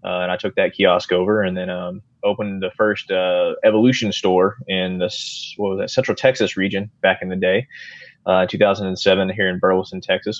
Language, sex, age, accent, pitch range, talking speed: English, male, 20-39, American, 95-120 Hz, 195 wpm